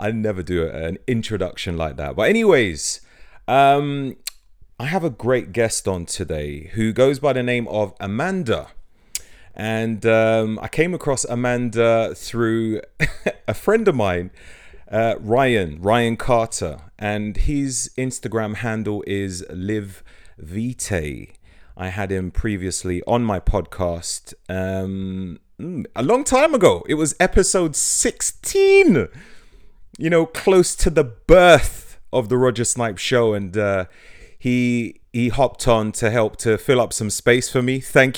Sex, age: male, 30-49